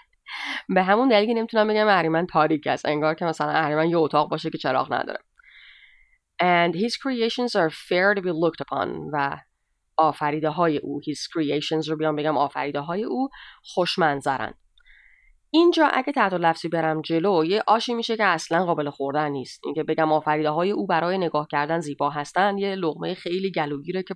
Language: Persian